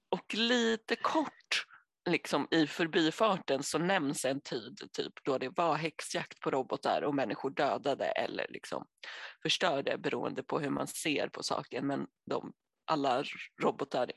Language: Swedish